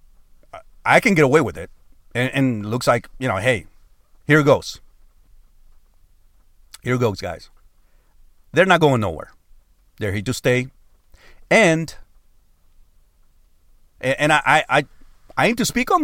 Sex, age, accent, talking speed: male, 40-59, American, 140 wpm